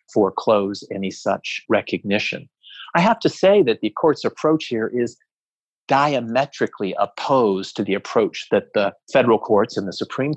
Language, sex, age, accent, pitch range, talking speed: English, male, 40-59, American, 100-120 Hz, 150 wpm